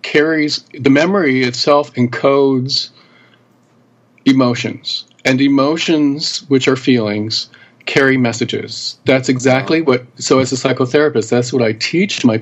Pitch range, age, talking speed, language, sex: 115-135 Hz, 40-59, 120 wpm, English, male